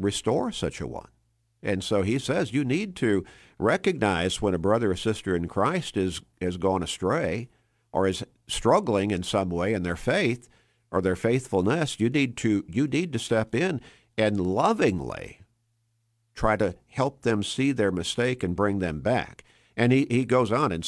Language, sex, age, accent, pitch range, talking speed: English, male, 50-69, American, 95-115 Hz, 180 wpm